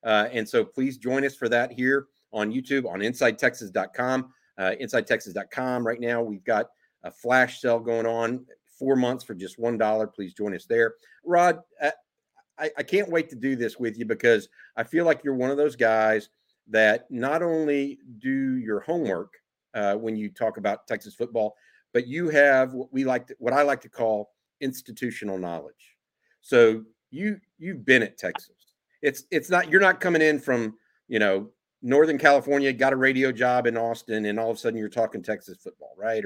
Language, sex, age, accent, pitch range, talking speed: English, male, 50-69, American, 110-140 Hz, 185 wpm